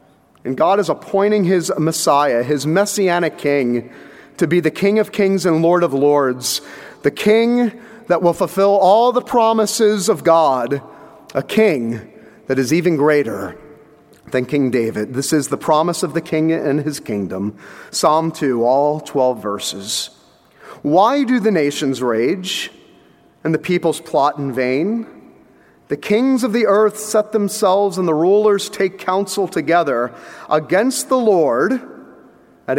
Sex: male